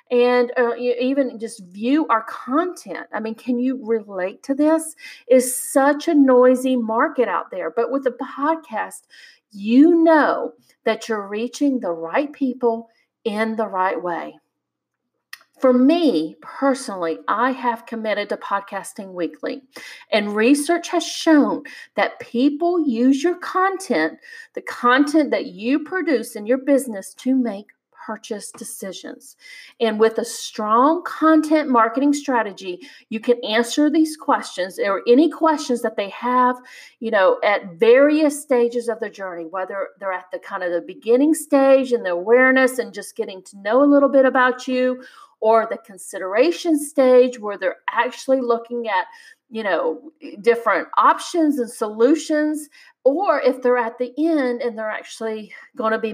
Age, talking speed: 40-59, 150 wpm